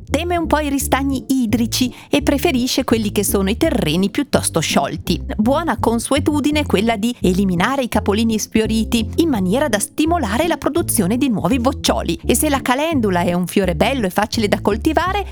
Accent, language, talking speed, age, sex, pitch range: native, Italian, 175 wpm, 40-59, female, 215-300 Hz